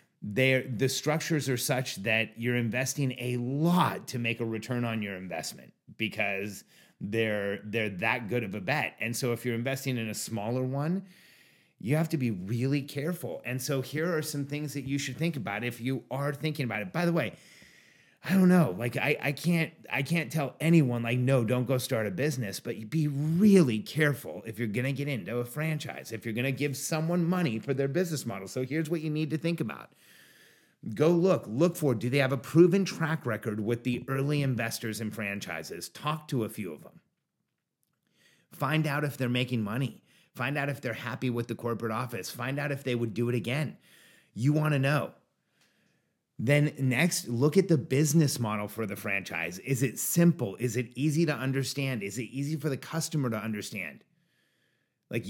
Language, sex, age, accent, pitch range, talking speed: English, male, 30-49, American, 115-150 Hz, 200 wpm